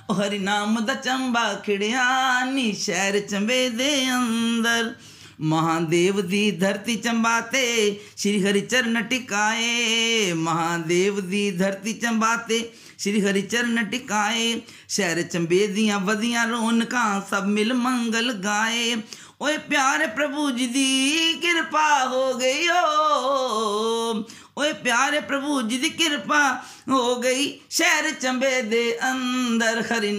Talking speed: 105 wpm